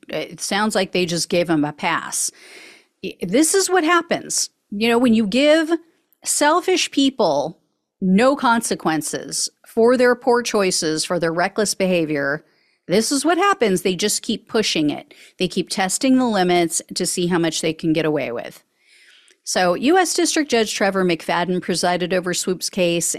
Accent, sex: American, female